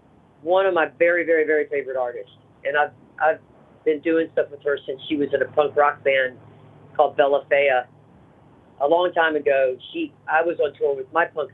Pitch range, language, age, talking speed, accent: 140-205 Hz, English, 40-59, 205 wpm, American